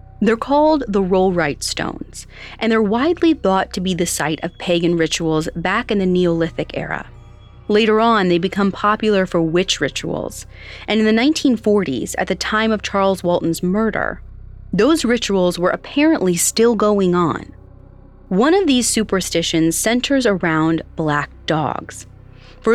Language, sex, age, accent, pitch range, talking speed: English, female, 30-49, American, 165-220 Hz, 150 wpm